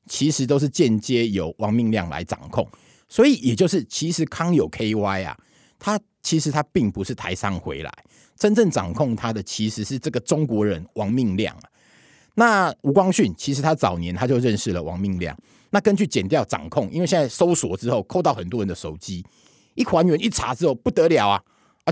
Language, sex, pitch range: Chinese, male, 105-165 Hz